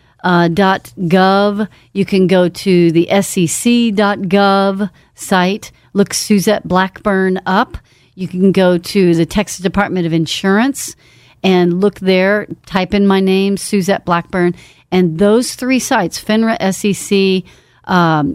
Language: English